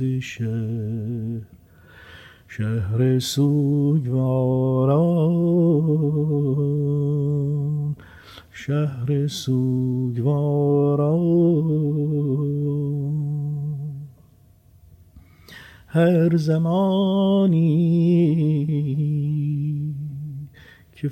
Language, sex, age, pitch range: Persian, male, 50-69, 125-150 Hz